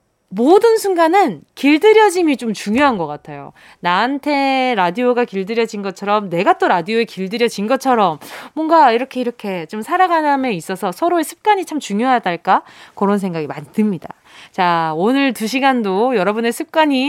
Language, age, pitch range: Korean, 20-39, 195-310 Hz